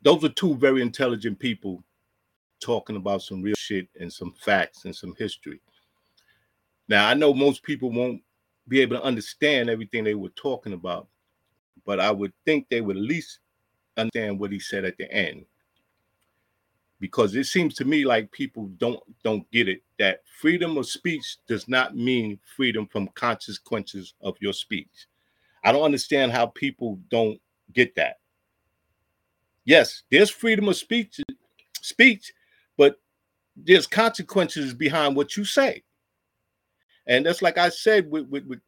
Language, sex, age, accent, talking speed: English, male, 50-69, American, 155 wpm